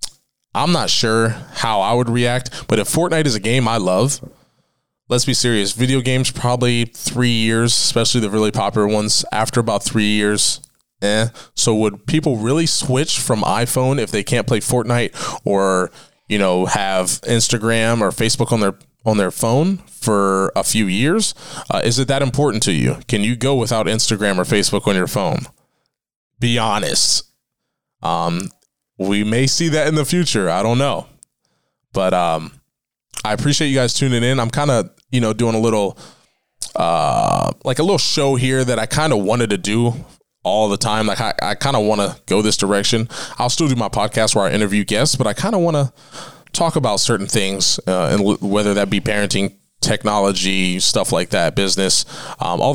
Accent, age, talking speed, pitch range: American, 20-39, 185 wpm, 105-130 Hz